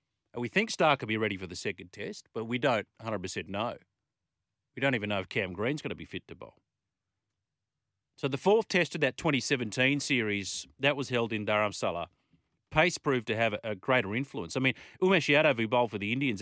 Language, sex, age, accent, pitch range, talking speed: English, male, 40-59, Australian, 105-140 Hz, 210 wpm